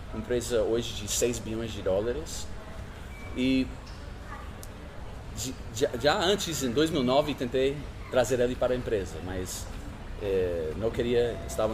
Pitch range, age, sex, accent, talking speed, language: 95-130 Hz, 30-49, male, Brazilian, 120 wpm, Portuguese